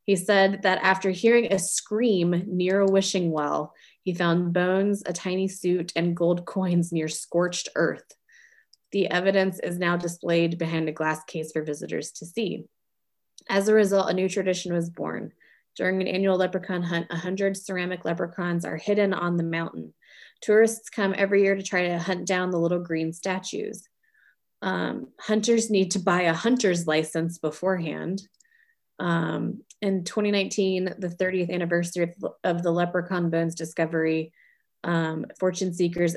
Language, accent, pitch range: English, American, 170-200 Hz